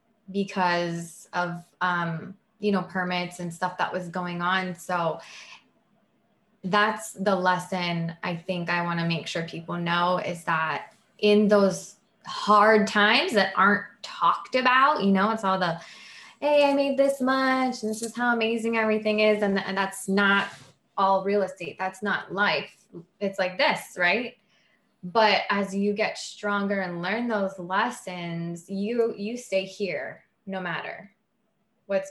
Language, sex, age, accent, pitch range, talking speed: English, female, 20-39, American, 185-220 Hz, 150 wpm